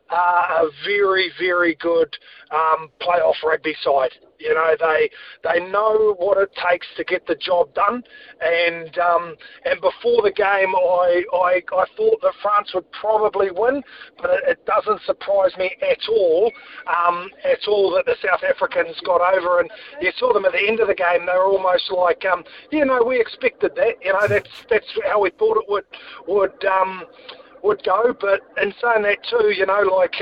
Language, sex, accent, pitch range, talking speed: English, male, Australian, 180-245 Hz, 190 wpm